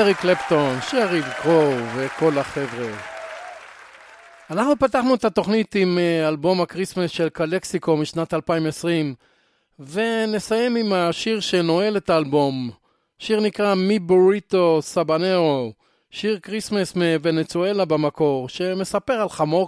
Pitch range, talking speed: 160-190 Hz, 105 wpm